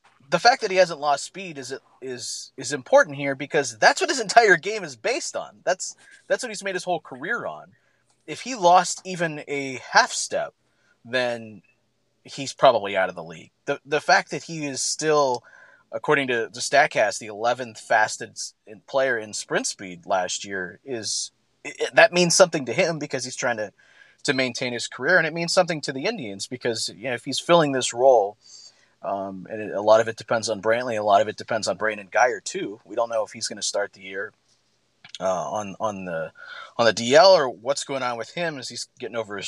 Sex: male